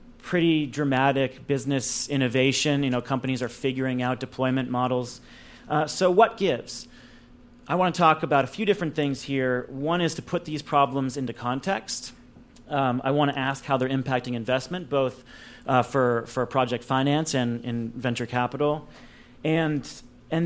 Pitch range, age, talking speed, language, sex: 125-160 Hz, 30-49, 165 wpm, English, male